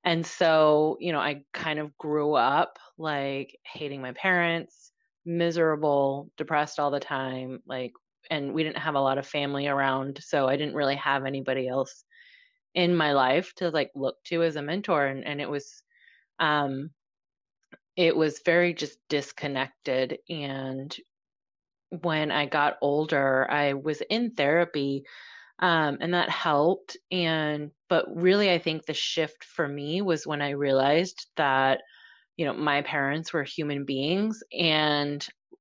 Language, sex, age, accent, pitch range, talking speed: English, female, 30-49, American, 145-175 Hz, 150 wpm